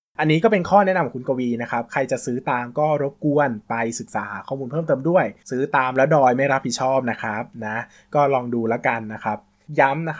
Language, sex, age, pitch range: Thai, male, 20-39, 115-145 Hz